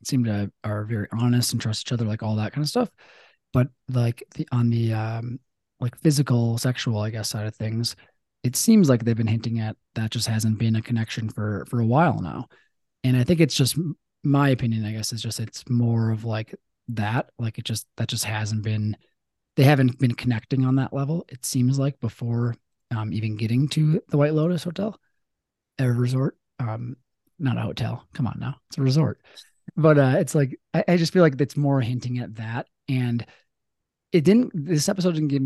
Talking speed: 205 wpm